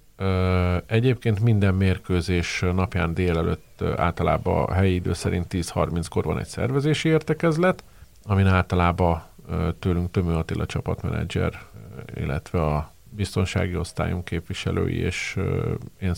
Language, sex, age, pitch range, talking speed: Hungarian, male, 50-69, 90-105 Hz, 110 wpm